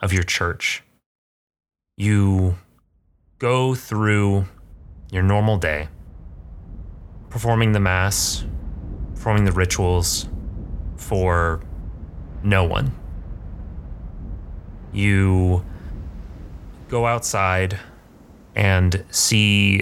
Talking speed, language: 70 wpm, English